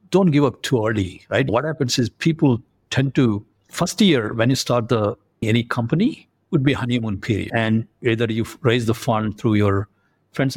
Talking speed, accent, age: 185 wpm, Indian, 60-79